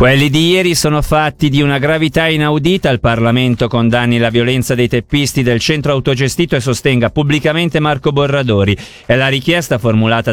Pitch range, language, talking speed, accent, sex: 115-155 Hz, Italian, 165 wpm, native, male